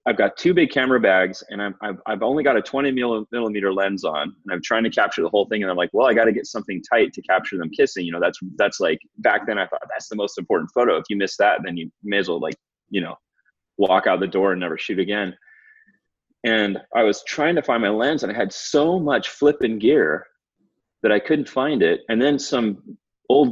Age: 30-49